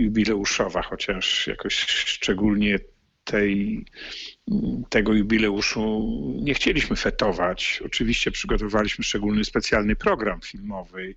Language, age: Polish, 50-69